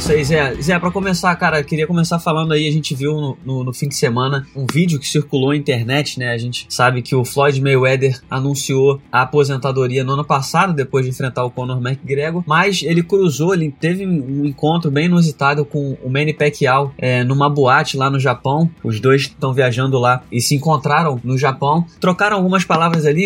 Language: Portuguese